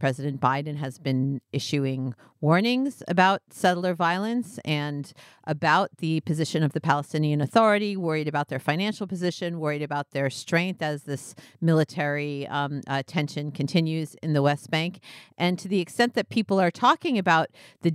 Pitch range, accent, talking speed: 150-195 Hz, American, 155 wpm